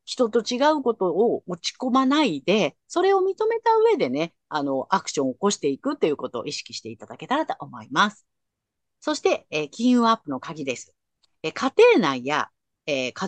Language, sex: Japanese, female